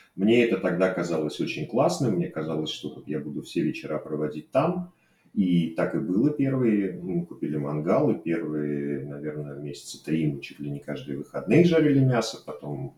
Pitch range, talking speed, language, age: 80-125 Hz, 170 wpm, Russian, 30-49